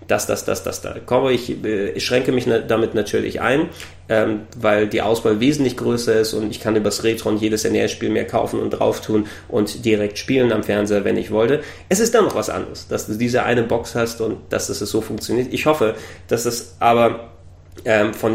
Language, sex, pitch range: German, male, 105-120 Hz